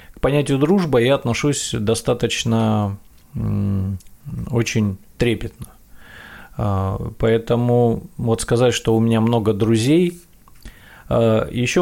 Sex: male